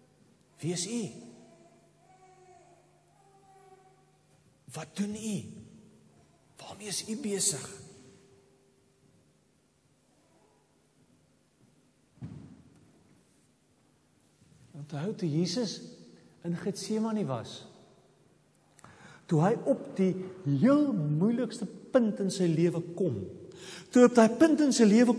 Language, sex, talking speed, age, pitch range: English, male, 90 wpm, 50-69, 145-225 Hz